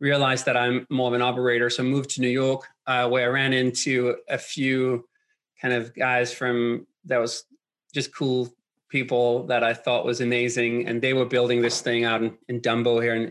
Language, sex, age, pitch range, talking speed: English, male, 30-49, 120-135 Hz, 205 wpm